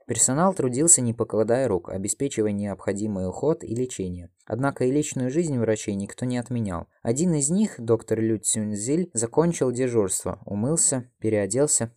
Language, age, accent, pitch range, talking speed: Russian, 20-39, native, 100-125 Hz, 140 wpm